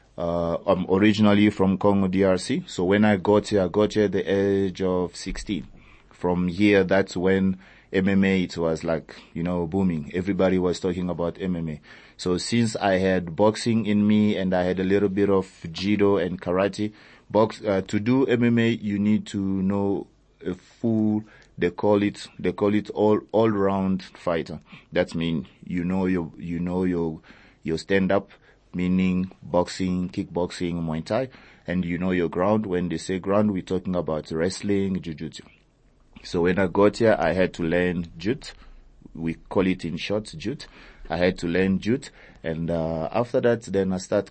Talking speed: 175 wpm